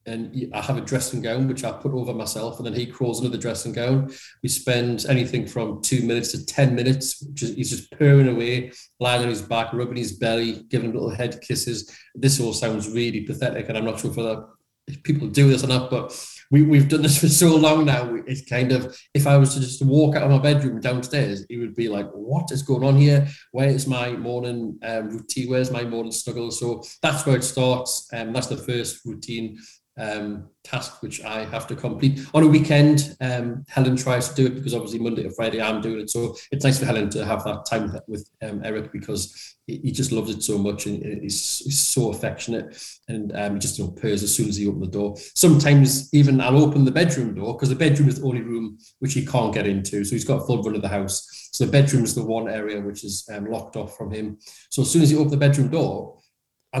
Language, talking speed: English, 240 wpm